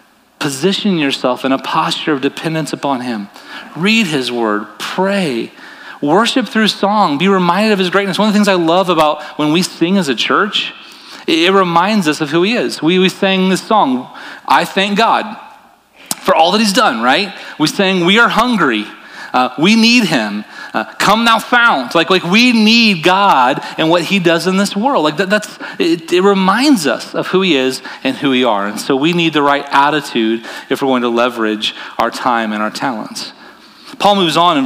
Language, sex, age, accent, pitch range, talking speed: English, male, 40-59, American, 130-210 Hz, 200 wpm